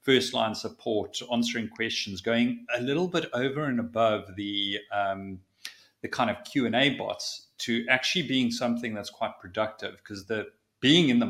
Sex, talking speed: male, 175 wpm